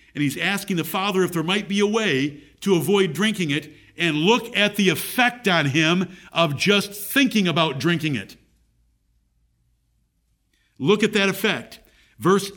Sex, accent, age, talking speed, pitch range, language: male, American, 50-69, 160 wpm, 135-195 Hz, English